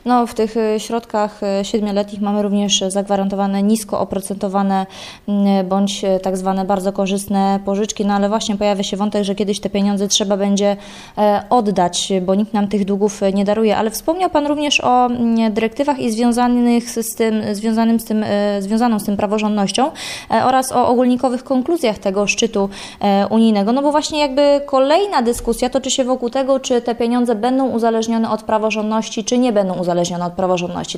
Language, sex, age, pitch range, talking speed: Polish, female, 20-39, 205-250 Hz, 165 wpm